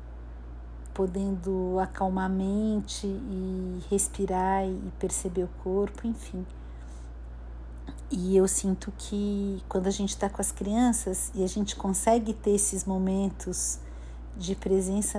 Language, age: Portuguese, 50-69